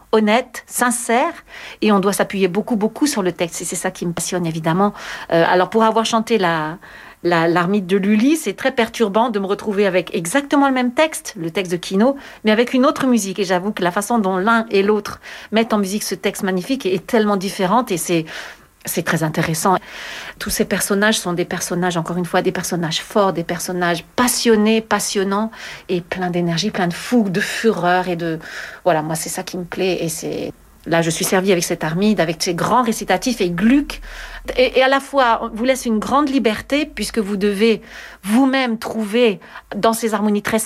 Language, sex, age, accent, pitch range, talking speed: French, female, 50-69, French, 180-235 Hz, 205 wpm